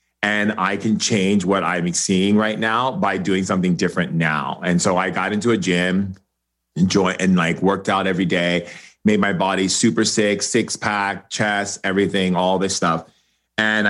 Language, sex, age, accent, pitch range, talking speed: English, male, 30-49, American, 90-105 Hz, 180 wpm